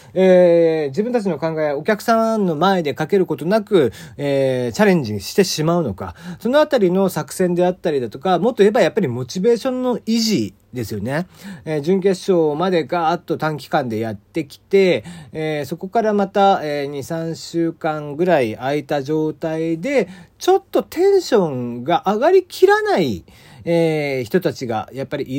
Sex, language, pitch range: male, Japanese, 130-195 Hz